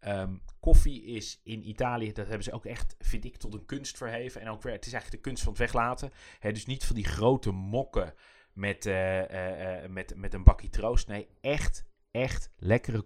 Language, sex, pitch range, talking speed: Dutch, male, 100-120 Hz, 205 wpm